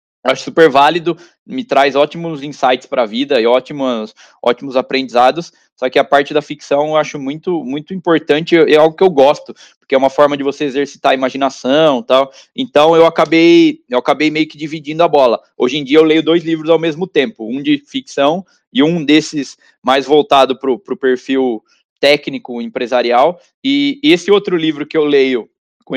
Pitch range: 130-165 Hz